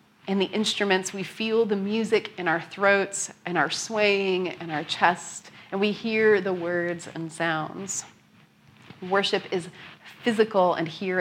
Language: English